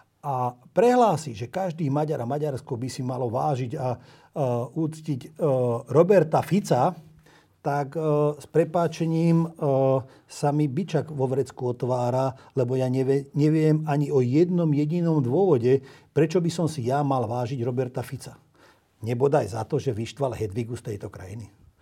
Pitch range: 125-155 Hz